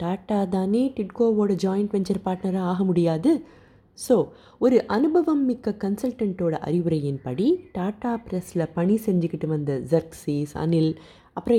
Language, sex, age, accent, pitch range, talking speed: Tamil, female, 20-39, native, 165-235 Hz, 115 wpm